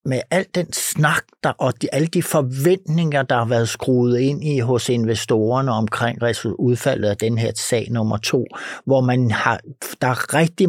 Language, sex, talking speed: Danish, male, 180 wpm